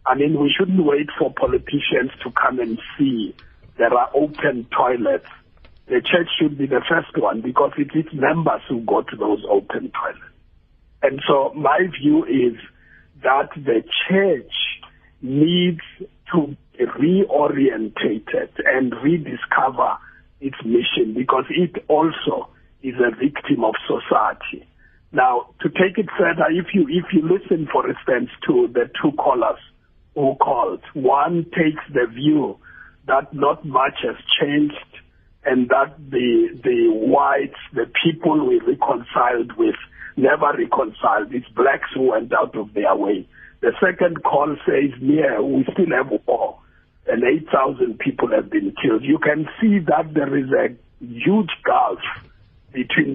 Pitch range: 140-200 Hz